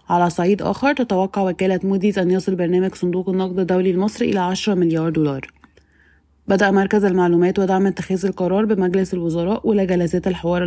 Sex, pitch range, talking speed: female, 170-185 Hz, 150 wpm